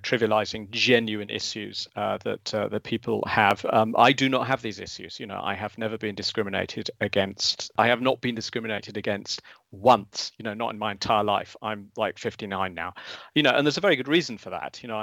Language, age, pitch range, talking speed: English, 40-59, 110-130 Hz, 215 wpm